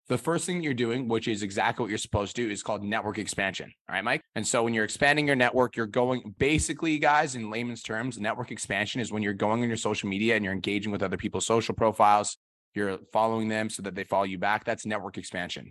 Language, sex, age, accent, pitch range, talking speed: English, male, 20-39, American, 105-125 Hz, 245 wpm